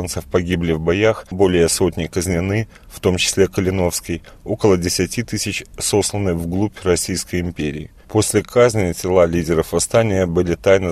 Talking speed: 130 wpm